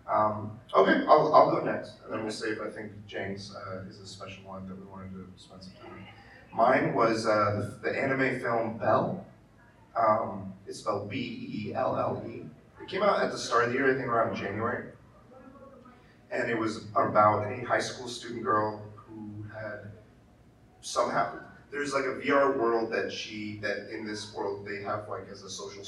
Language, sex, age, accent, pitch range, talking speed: English, male, 30-49, American, 100-115 Hz, 185 wpm